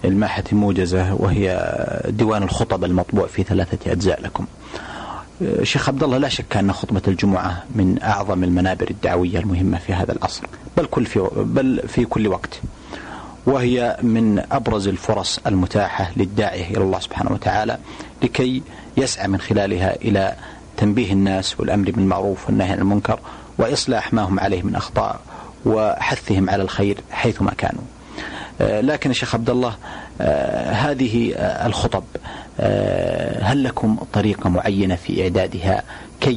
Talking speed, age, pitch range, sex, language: 125 wpm, 40-59, 95-115 Hz, male, Arabic